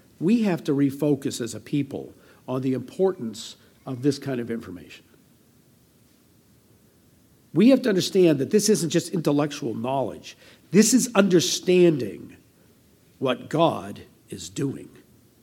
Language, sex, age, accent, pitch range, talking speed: English, male, 50-69, American, 140-195 Hz, 125 wpm